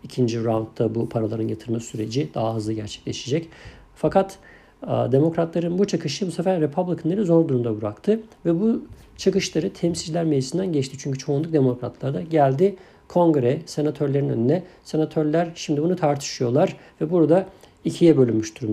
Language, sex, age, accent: Turkish, male, 50-69, native